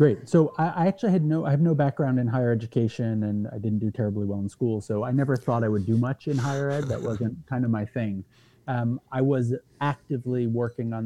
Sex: male